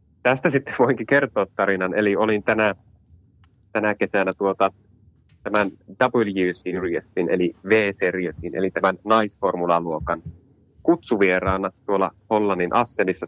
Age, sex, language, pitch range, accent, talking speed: 30-49, male, Finnish, 95-105 Hz, native, 105 wpm